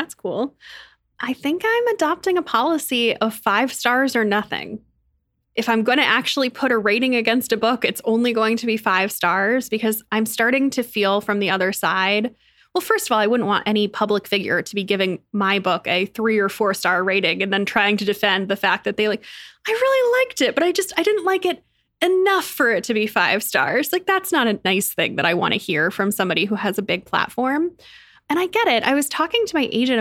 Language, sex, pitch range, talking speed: English, female, 200-265 Hz, 235 wpm